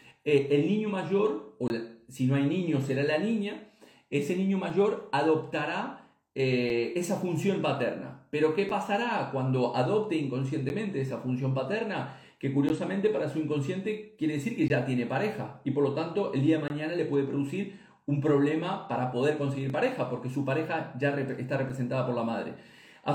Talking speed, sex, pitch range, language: 180 wpm, male, 130-175 Hz, Spanish